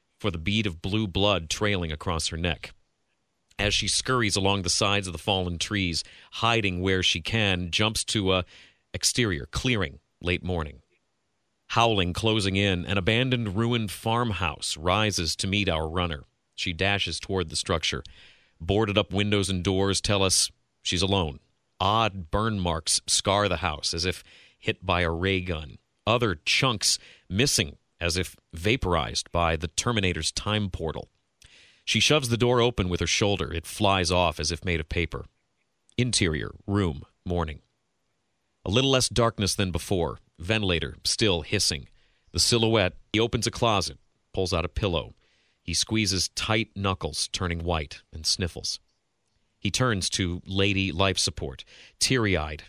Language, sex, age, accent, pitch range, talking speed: English, male, 40-59, American, 85-105 Hz, 155 wpm